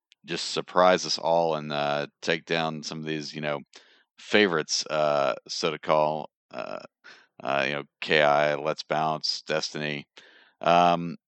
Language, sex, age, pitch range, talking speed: English, male, 40-59, 75-90 Hz, 145 wpm